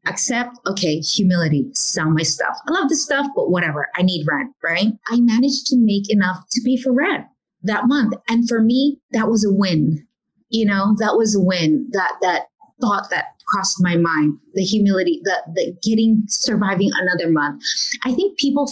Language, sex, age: English, female, 30-49